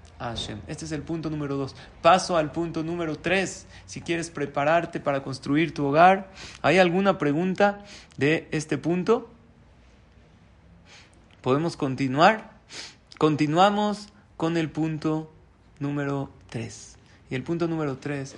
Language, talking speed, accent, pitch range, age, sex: Spanish, 120 wpm, Mexican, 130-165 Hz, 40-59, male